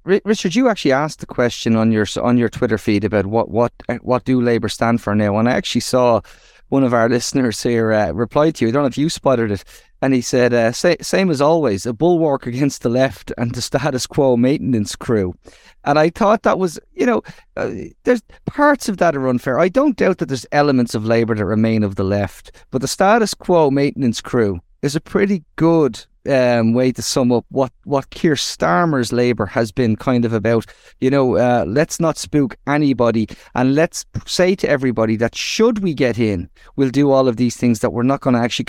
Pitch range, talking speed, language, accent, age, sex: 115-155 Hz, 220 wpm, English, Irish, 30-49, male